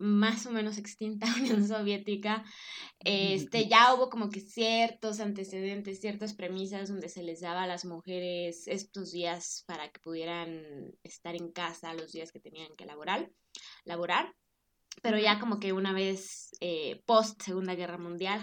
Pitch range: 180-225 Hz